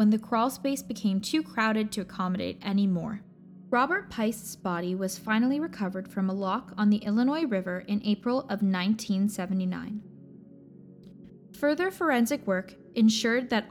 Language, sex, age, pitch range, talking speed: English, female, 10-29, 190-230 Hz, 145 wpm